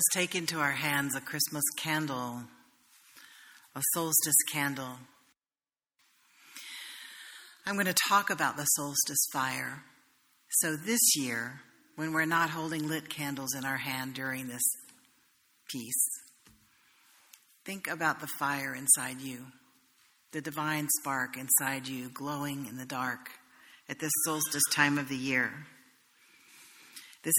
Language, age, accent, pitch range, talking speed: English, 50-69, American, 135-170 Hz, 125 wpm